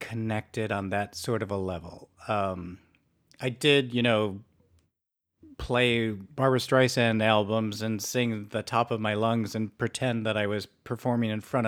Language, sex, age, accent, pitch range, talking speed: English, male, 40-59, American, 100-125 Hz, 160 wpm